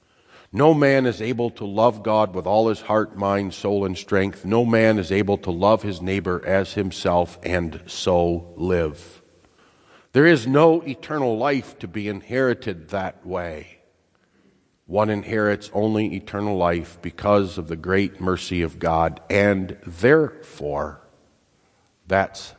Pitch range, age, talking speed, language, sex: 95-140 Hz, 50-69, 140 wpm, English, male